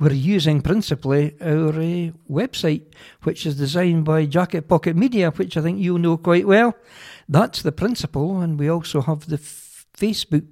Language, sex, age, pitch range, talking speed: English, male, 60-79, 150-180 Hz, 170 wpm